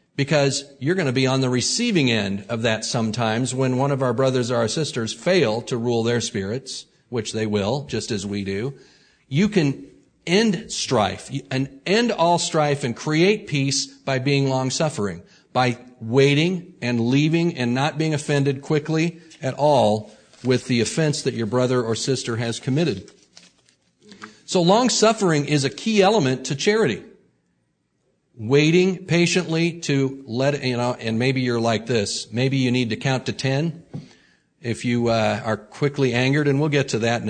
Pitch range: 120-150 Hz